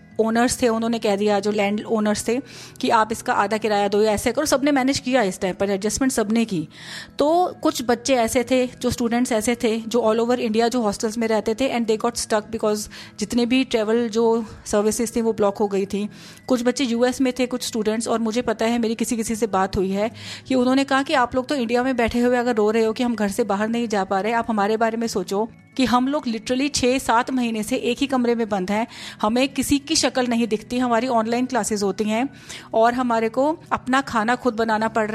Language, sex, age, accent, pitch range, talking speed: Hindi, female, 30-49, native, 215-255 Hz, 240 wpm